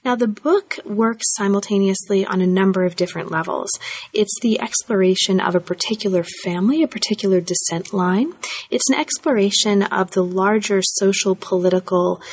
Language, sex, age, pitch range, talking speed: English, female, 30-49, 185-220 Hz, 145 wpm